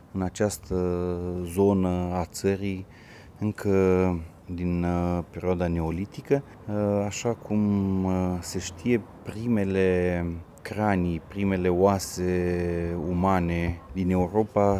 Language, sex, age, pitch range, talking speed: Romanian, male, 30-49, 90-105 Hz, 80 wpm